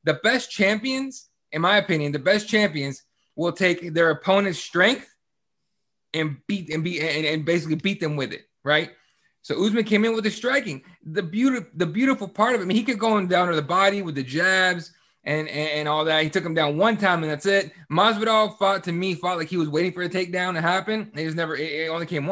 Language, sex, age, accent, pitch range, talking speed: English, male, 20-39, American, 165-220 Hz, 230 wpm